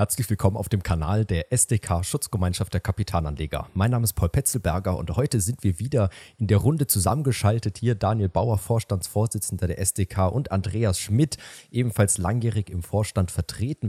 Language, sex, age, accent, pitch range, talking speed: German, male, 40-59, German, 100-125 Hz, 165 wpm